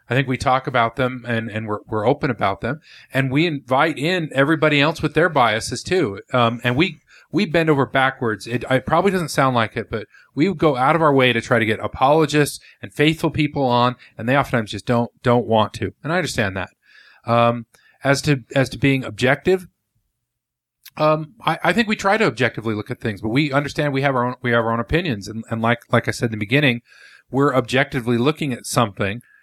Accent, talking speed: American, 220 wpm